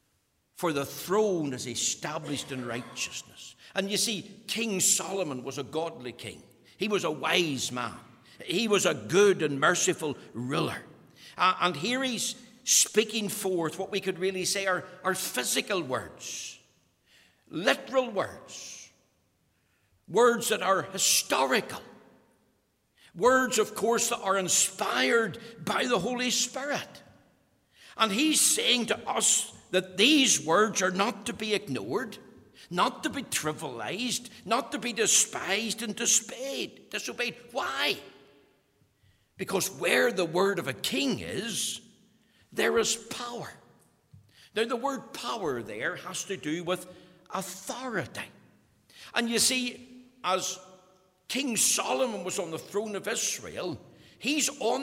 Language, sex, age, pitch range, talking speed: English, male, 60-79, 180-235 Hz, 130 wpm